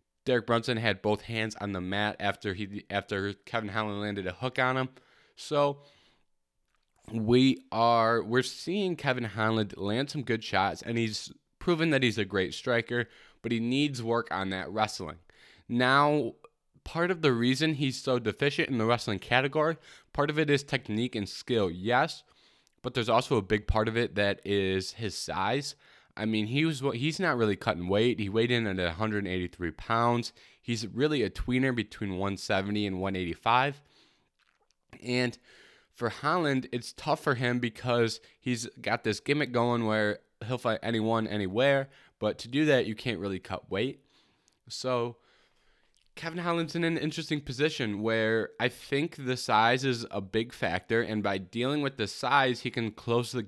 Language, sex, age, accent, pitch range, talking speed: English, male, 20-39, American, 105-130 Hz, 170 wpm